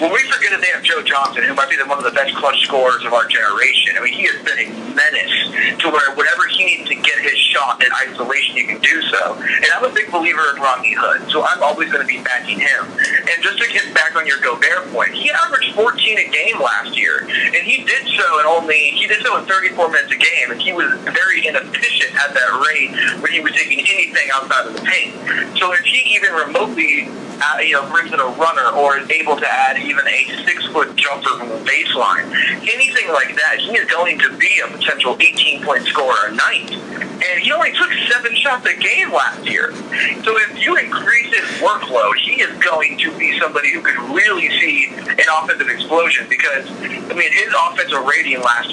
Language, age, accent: English, 30-49, American